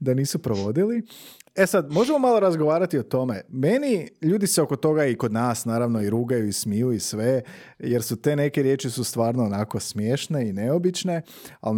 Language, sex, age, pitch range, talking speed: Croatian, male, 30-49, 115-170 Hz, 190 wpm